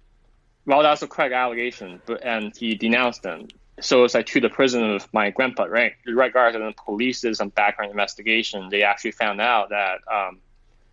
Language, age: English, 20-39